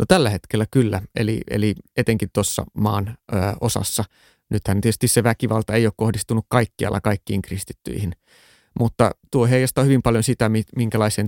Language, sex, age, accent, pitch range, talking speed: Finnish, male, 30-49, native, 100-115 Hz, 150 wpm